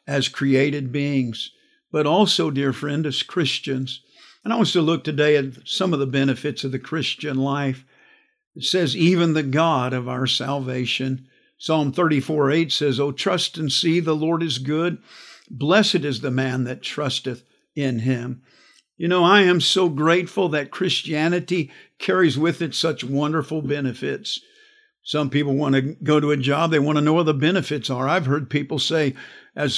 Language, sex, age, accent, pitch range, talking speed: English, male, 50-69, American, 140-180 Hz, 180 wpm